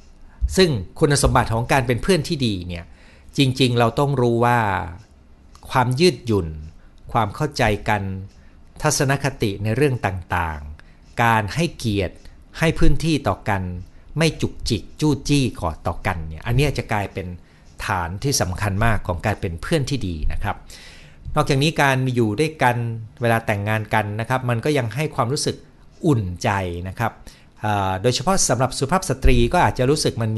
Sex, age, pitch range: male, 60-79, 95-140 Hz